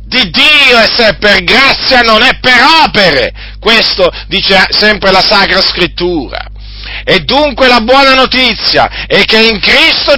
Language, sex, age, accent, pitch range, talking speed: Italian, male, 50-69, native, 215-265 Hz, 145 wpm